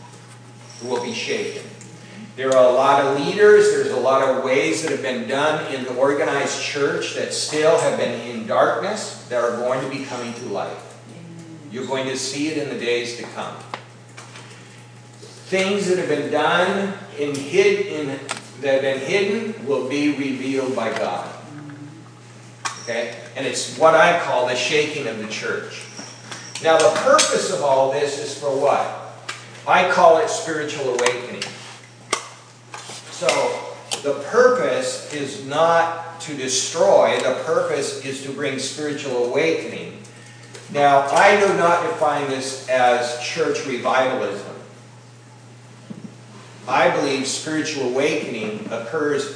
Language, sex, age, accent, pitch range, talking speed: English, male, 50-69, American, 130-185 Hz, 140 wpm